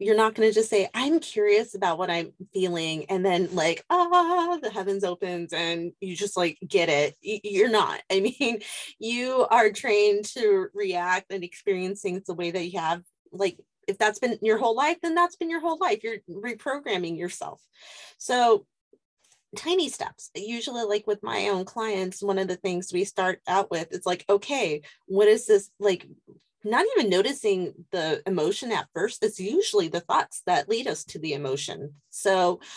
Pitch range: 185-260 Hz